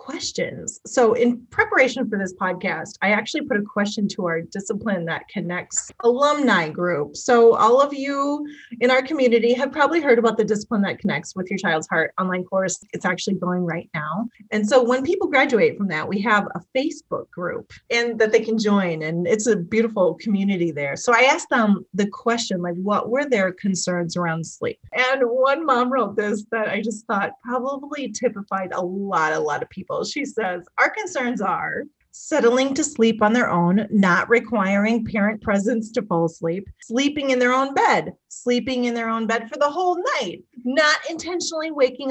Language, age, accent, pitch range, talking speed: English, 30-49, American, 195-270 Hz, 190 wpm